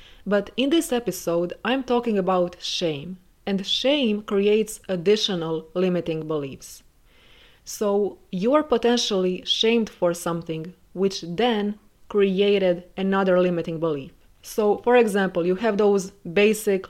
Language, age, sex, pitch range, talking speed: English, 20-39, female, 180-225 Hz, 115 wpm